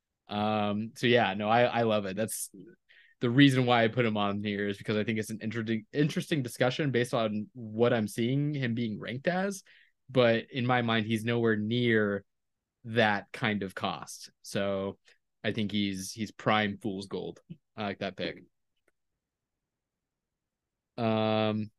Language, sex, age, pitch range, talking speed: English, male, 20-39, 105-135 Hz, 160 wpm